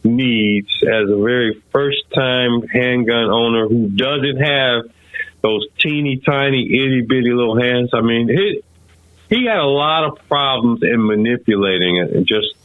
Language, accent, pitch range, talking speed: English, American, 105-130 Hz, 145 wpm